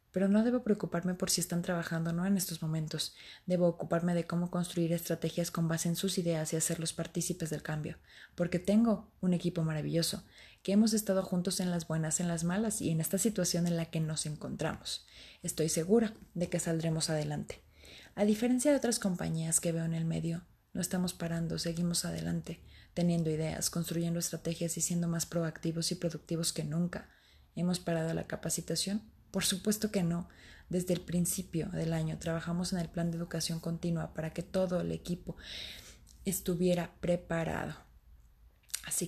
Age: 20-39